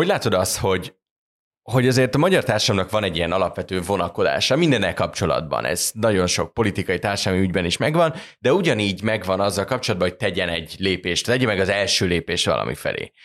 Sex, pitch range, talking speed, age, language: male, 90-105 Hz, 175 wpm, 20-39, Hungarian